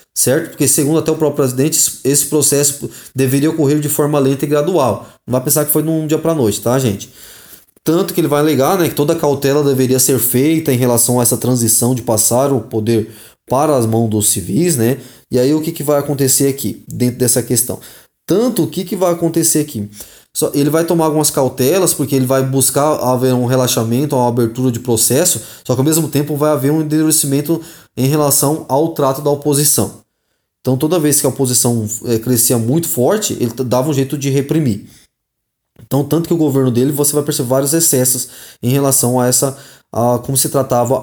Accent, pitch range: Brazilian, 125-150 Hz